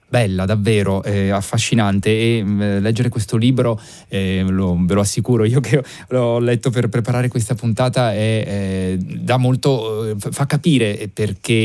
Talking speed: 145 wpm